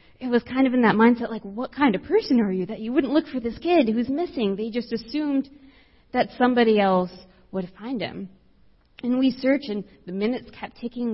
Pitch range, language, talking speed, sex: 185-255 Hz, English, 215 wpm, female